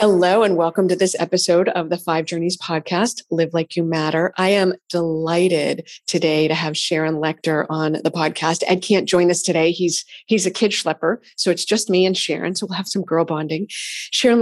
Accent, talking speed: American, 205 wpm